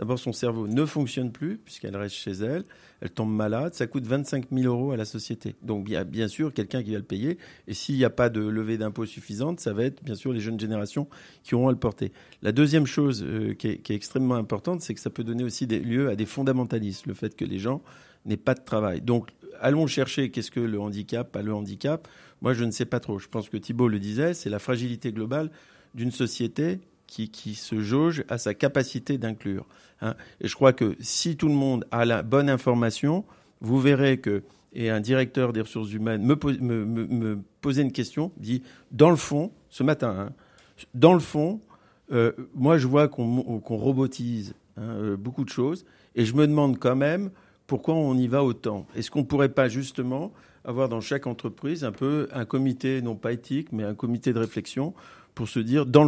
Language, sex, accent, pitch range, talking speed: French, male, French, 110-140 Hz, 215 wpm